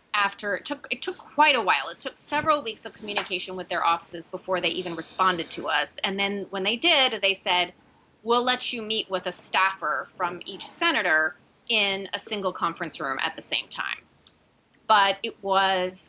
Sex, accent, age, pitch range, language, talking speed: female, American, 30-49, 185-250 Hz, English, 195 wpm